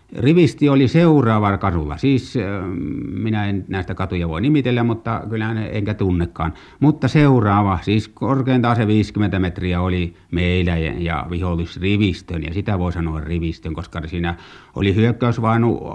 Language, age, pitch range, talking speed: Finnish, 60-79, 90-125 Hz, 135 wpm